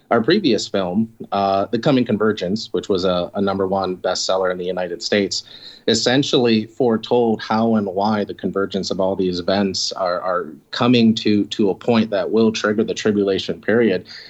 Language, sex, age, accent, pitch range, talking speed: English, male, 30-49, American, 95-115 Hz, 175 wpm